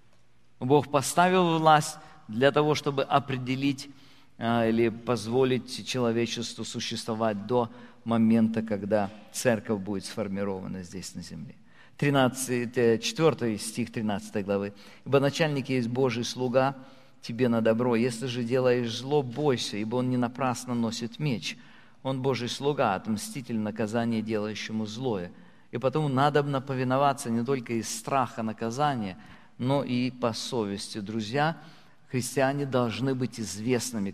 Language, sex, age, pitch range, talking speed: Russian, male, 50-69, 110-140 Hz, 120 wpm